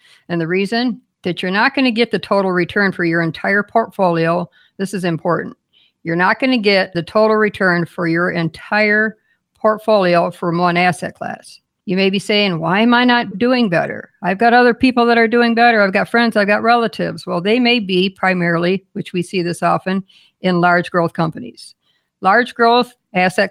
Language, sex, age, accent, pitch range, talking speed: English, female, 60-79, American, 180-220 Hz, 195 wpm